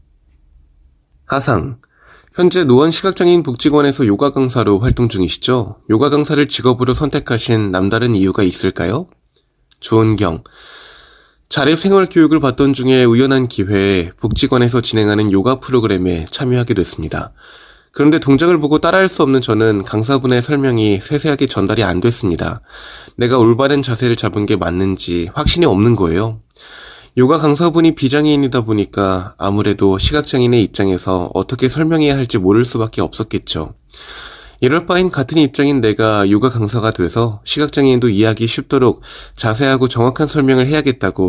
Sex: male